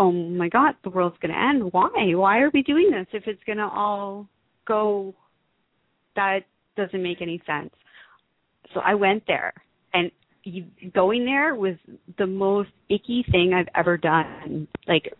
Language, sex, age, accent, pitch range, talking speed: English, female, 40-59, American, 185-230 Hz, 160 wpm